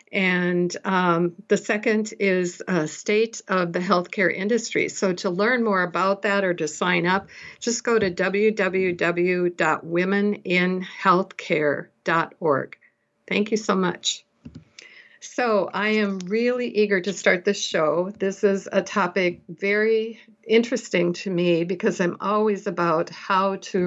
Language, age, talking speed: English, 60-79, 130 wpm